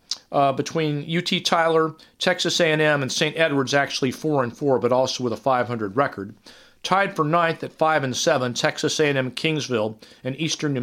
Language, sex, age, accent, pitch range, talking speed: English, male, 40-59, American, 125-165 Hz, 175 wpm